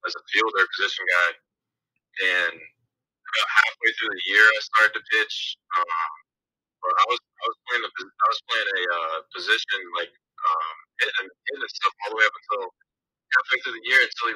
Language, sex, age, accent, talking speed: English, male, 20-39, American, 190 wpm